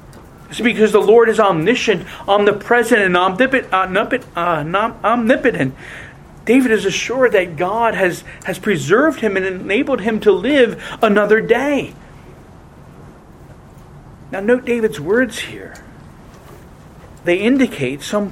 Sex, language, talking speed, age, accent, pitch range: male, English, 110 wpm, 40-59, American, 150-215 Hz